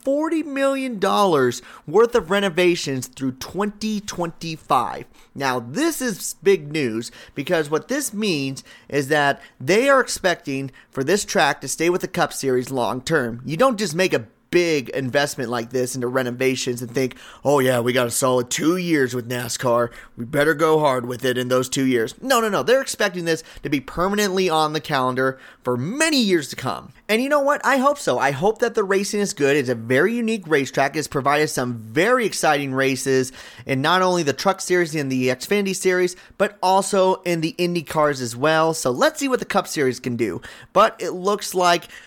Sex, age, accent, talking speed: male, 30-49, American, 195 wpm